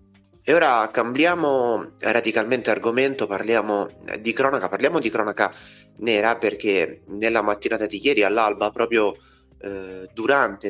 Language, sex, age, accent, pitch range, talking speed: Italian, male, 30-49, native, 100-120 Hz, 120 wpm